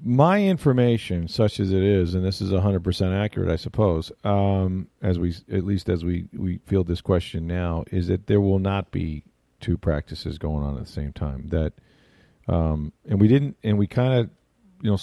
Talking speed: 210 wpm